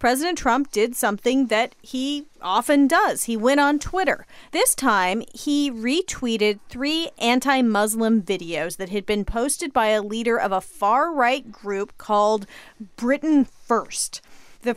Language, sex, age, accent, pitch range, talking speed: English, female, 30-49, American, 205-255 Hz, 140 wpm